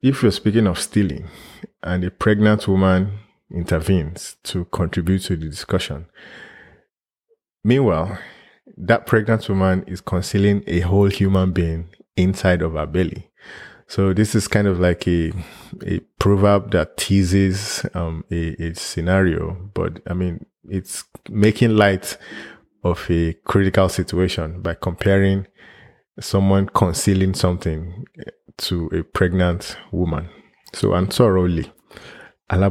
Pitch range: 90-100 Hz